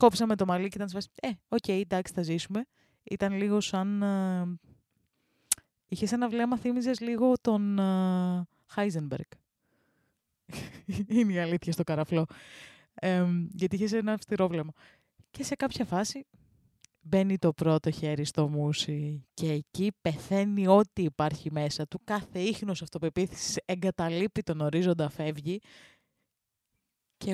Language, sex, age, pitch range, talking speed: Greek, female, 20-39, 175-220 Hz, 130 wpm